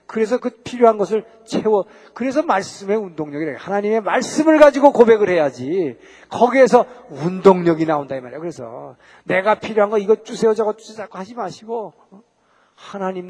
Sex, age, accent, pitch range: male, 40-59, native, 170-235 Hz